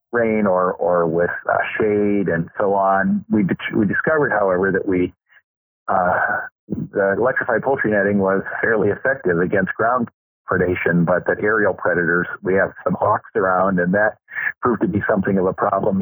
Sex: male